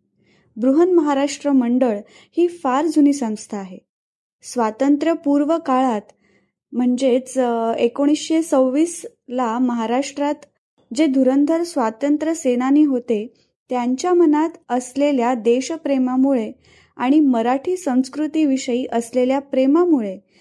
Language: Marathi